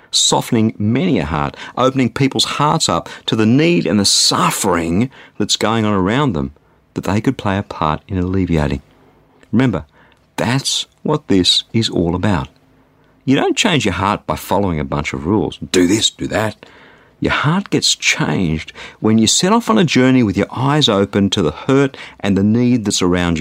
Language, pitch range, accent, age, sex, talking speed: English, 95-130 Hz, Australian, 50-69, male, 185 wpm